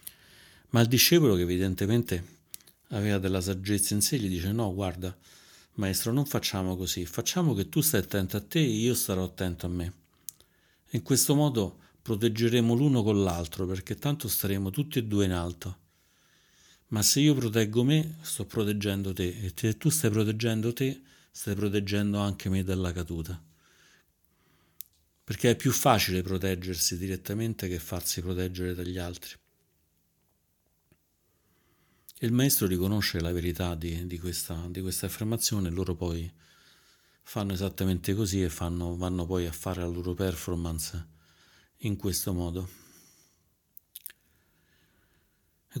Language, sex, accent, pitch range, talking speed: Italian, male, native, 90-110 Hz, 135 wpm